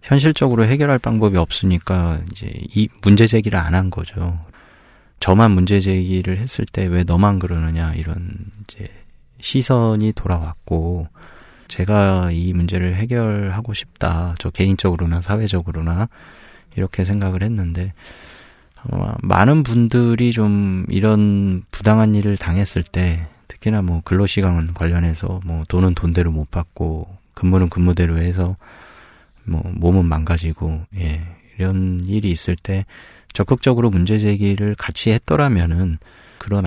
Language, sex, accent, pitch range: Korean, male, native, 85-100 Hz